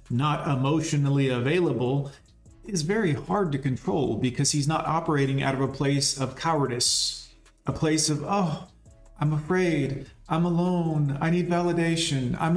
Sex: male